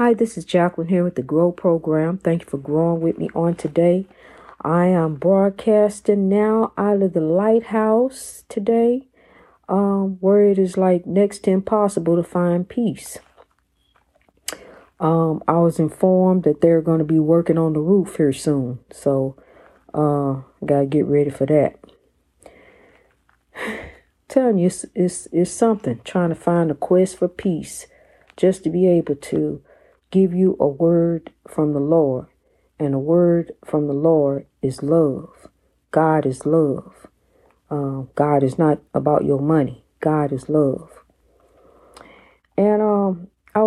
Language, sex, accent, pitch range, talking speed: English, female, American, 150-185 Hz, 150 wpm